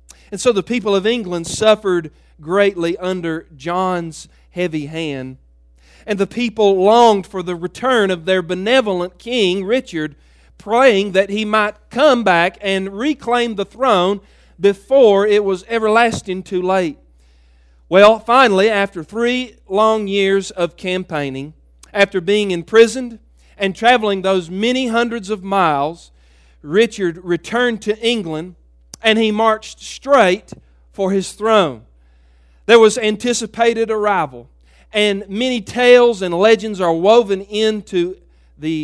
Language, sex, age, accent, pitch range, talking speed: English, male, 40-59, American, 165-220 Hz, 125 wpm